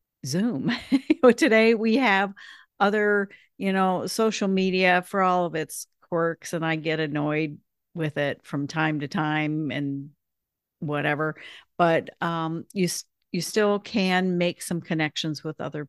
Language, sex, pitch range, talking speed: English, female, 155-200 Hz, 140 wpm